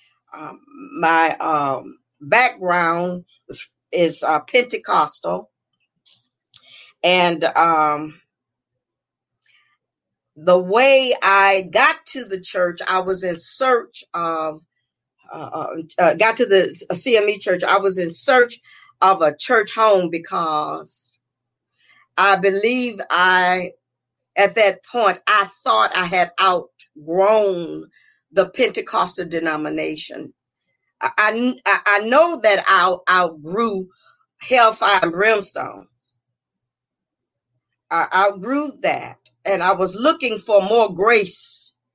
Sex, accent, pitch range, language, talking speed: female, American, 165-220 Hz, English, 105 wpm